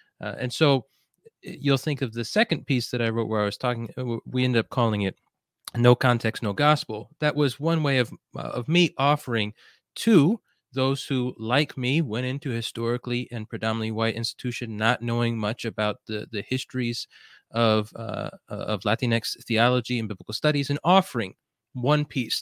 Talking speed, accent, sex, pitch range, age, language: 175 wpm, American, male, 110-130 Hz, 30-49, English